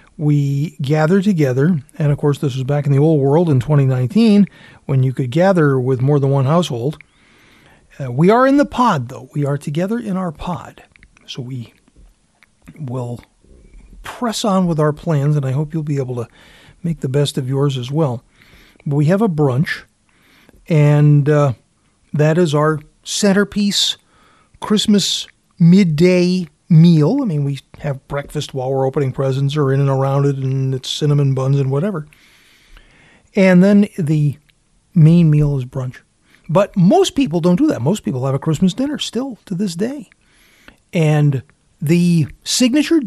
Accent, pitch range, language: American, 140-180 Hz, English